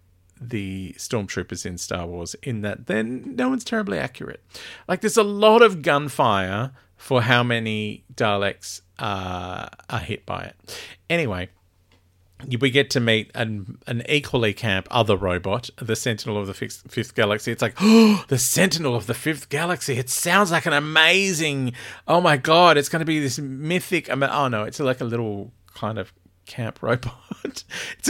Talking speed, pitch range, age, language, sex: 170 wpm, 100-140 Hz, 40-59, English, male